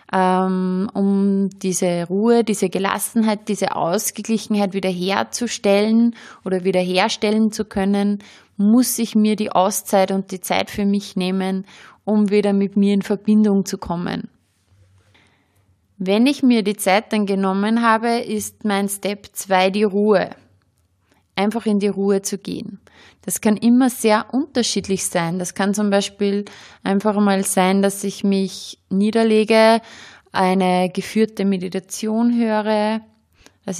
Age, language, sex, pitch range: 20-39, German, female, 190-220 Hz